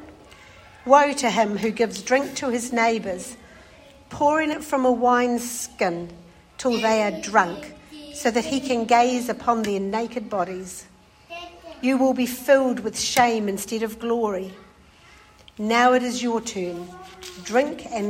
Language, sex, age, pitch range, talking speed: English, female, 60-79, 205-255 Hz, 145 wpm